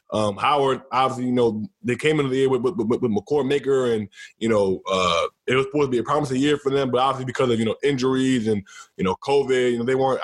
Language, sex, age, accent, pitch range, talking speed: English, male, 20-39, American, 140-185 Hz, 250 wpm